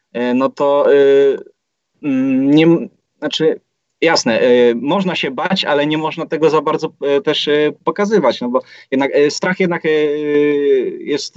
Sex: male